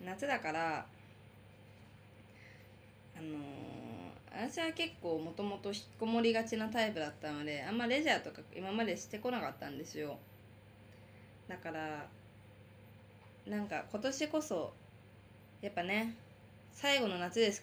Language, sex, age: Japanese, female, 20-39